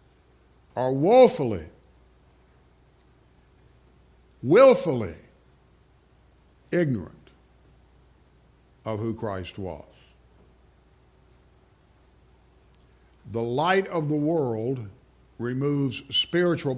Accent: American